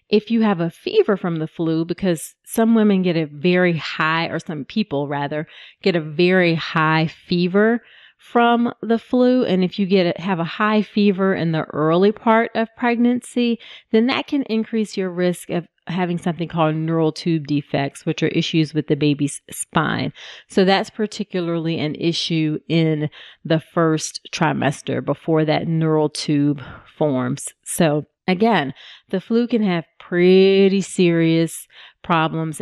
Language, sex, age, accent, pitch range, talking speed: English, female, 30-49, American, 160-205 Hz, 155 wpm